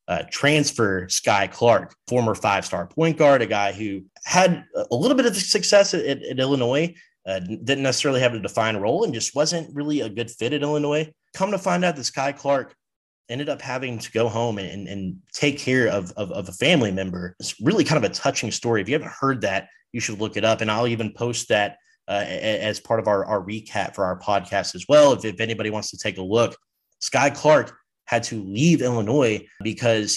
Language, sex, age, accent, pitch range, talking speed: English, male, 30-49, American, 105-140 Hz, 220 wpm